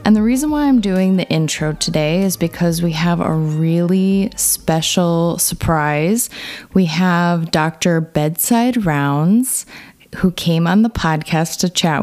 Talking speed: 145 wpm